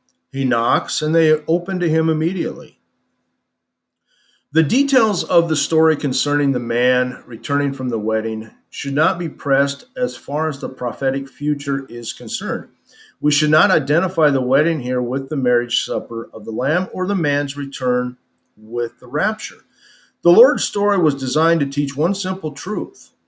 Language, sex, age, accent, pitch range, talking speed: English, male, 50-69, American, 125-165 Hz, 160 wpm